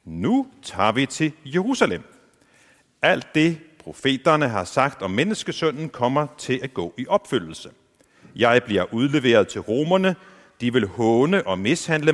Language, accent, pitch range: Danish, native, 115-170 Hz